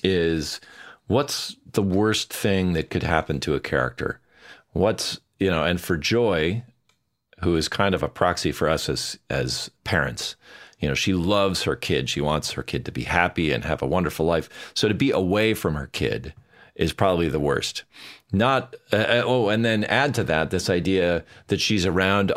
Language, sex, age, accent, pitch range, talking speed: English, male, 40-59, American, 80-95 Hz, 190 wpm